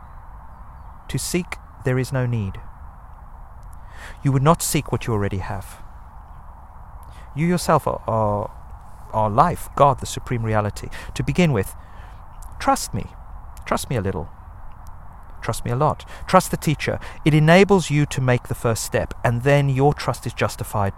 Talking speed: 155 wpm